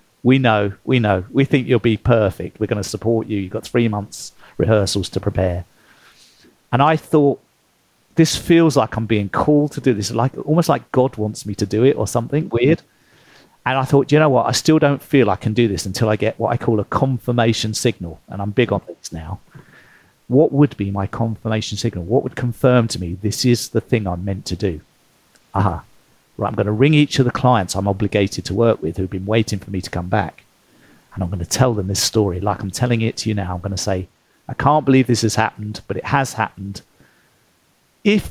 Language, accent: English, British